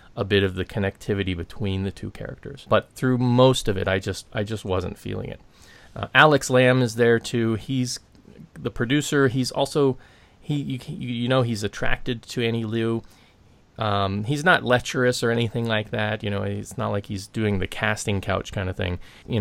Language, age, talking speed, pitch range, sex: English, 30-49, 195 wpm, 100-120 Hz, male